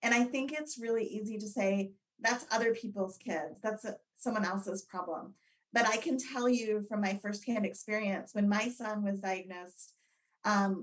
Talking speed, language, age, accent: 170 wpm, English, 30-49, American